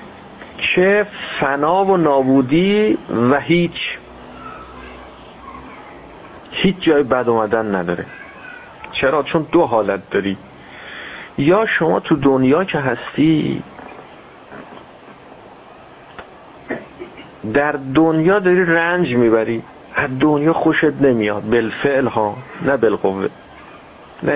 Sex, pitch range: male, 120-165 Hz